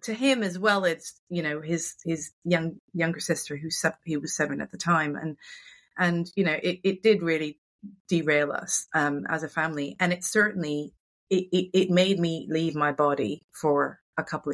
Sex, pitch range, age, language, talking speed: female, 160-185 Hz, 30-49, English, 200 wpm